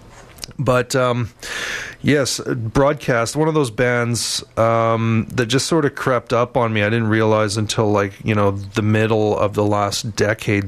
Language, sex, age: English, male, 30-49